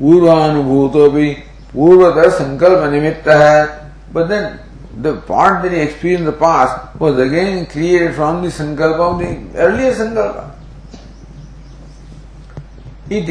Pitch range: 145-185 Hz